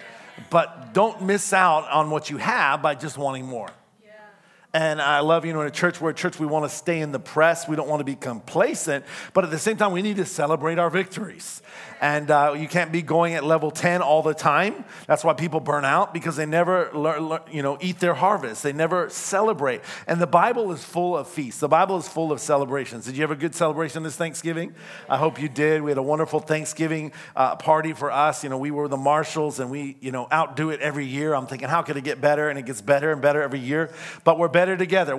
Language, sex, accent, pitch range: English, male, American, 150-180 Hz